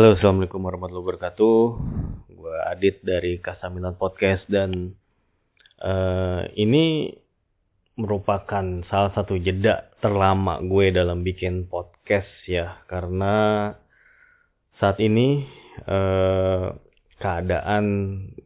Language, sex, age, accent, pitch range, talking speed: Indonesian, male, 20-39, native, 90-100 Hz, 90 wpm